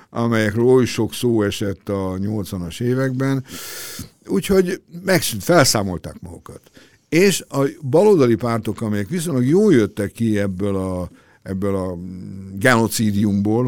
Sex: male